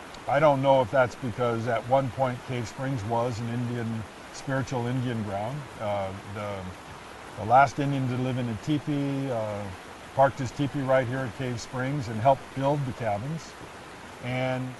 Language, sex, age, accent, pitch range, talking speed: English, male, 50-69, American, 115-145 Hz, 170 wpm